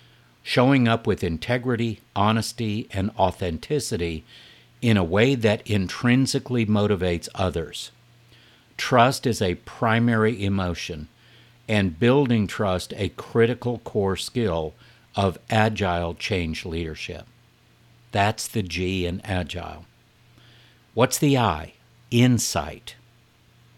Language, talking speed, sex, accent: English, 100 wpm, male, American